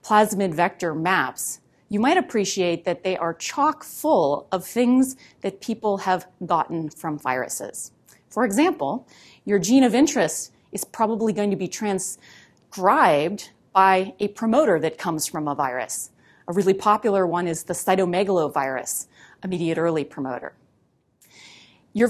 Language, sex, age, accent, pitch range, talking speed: English, female, 30-49, American, 185-230 Hz, 135 wpm